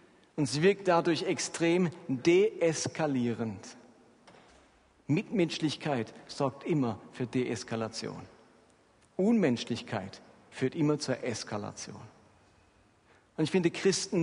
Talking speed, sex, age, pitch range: 85 wpm, male, 50-69, 145-185 Hz